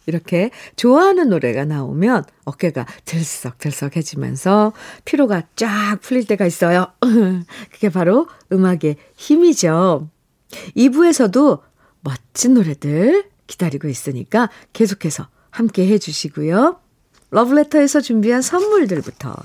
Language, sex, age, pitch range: Korean, female, 50-69, 170-265 Hz